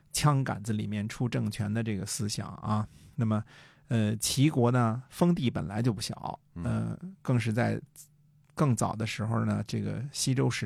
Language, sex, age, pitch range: Chinese, male, 50-69, 105-135 Hz